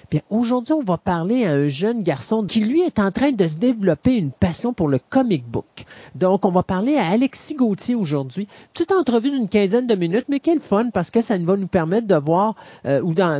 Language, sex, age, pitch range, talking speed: French, male, 40-59, 165-220 Hz, 230 wpm